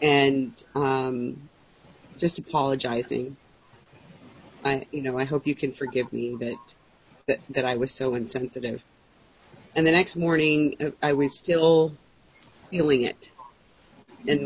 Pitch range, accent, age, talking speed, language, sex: 140-185 Hz, American, 30-49, 125 wpm, English, female